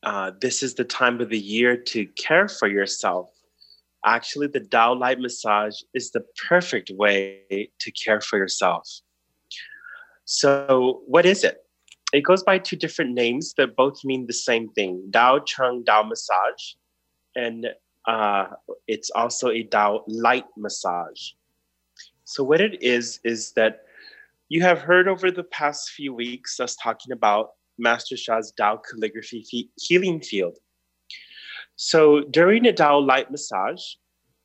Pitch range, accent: 115-150 Hz, American